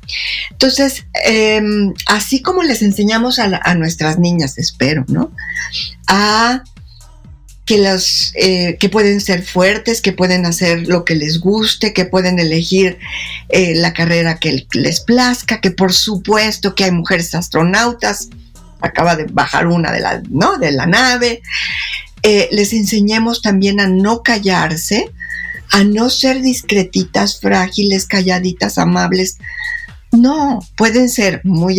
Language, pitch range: Spanish, 180-235 Hz